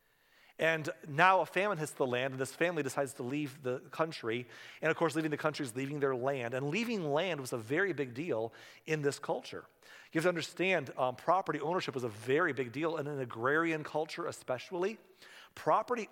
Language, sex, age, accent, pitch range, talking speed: English, male, 40-59, American, 135-180 Hz, 205 wpm